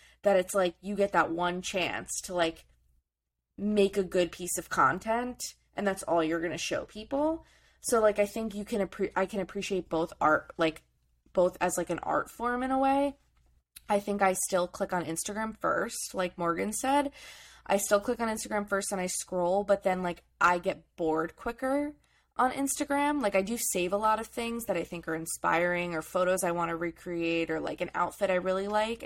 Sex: female